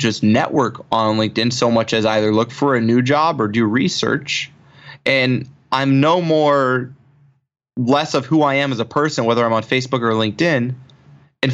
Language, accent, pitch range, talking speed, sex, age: English, American, 120-145 Hz, 180 wpm, male, 20-39